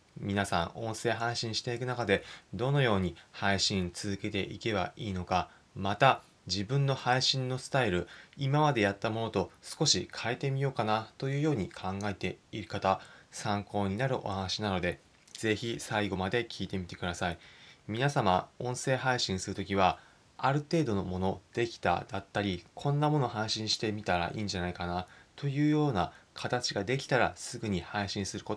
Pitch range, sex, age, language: 95-130 Hz, male, 20-39, Japanese